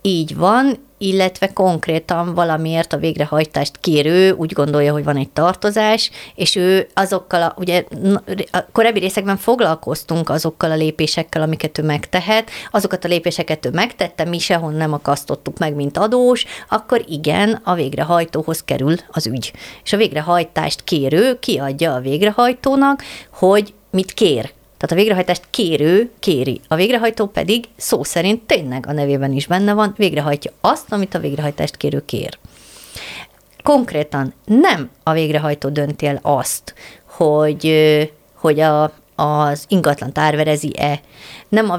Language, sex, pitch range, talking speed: Hungarian, female, 150-195 Hz, 135 wpm